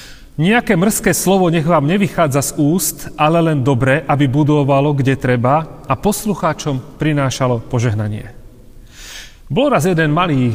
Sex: male